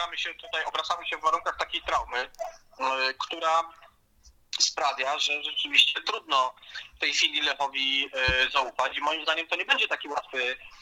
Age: 30-49